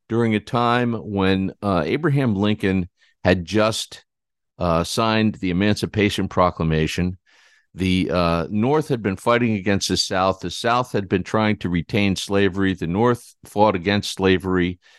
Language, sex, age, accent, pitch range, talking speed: English, male, 50-69, American, 85-110 Hz, 145 wpm